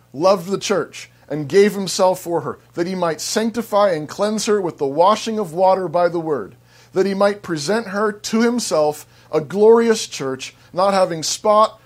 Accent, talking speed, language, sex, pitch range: American, 180 wpm, English, male, 140-210 Hz